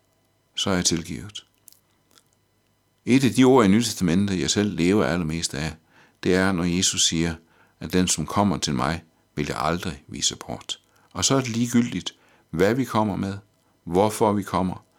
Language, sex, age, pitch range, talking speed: Danish, male, 60-79, 90-110 Hz, 170 wpm